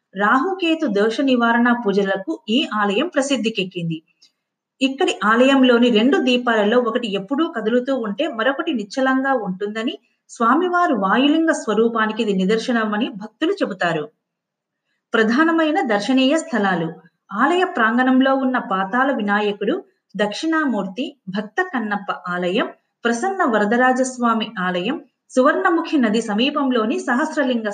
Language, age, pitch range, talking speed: Telugu, 30-49, 205-275 Hz, 95 wpm